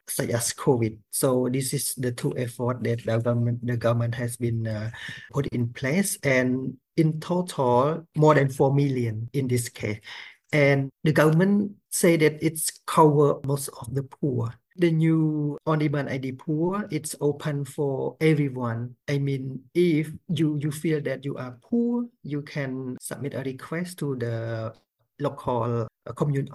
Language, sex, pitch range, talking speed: English, male, 120-150 Hz, 160 wpm